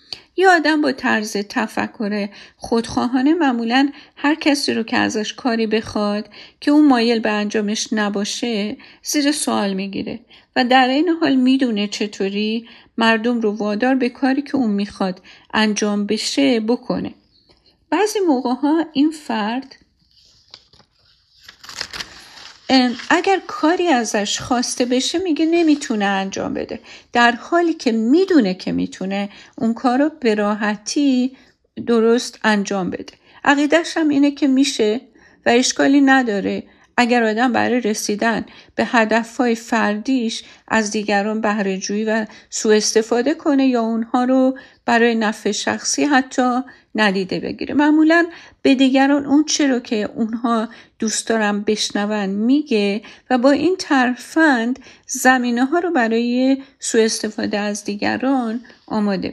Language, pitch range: Persian, 215-280 Hz